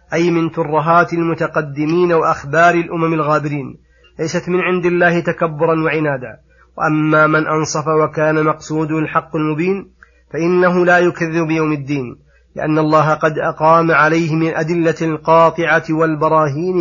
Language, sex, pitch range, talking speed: Arabic, male, 150-170 Hz, 120 wpm